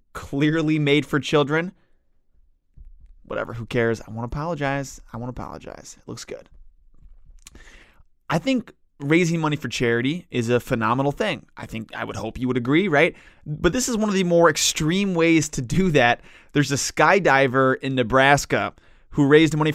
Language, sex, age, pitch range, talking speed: English, male, 20-39, 120-160 Hz, 165 wpm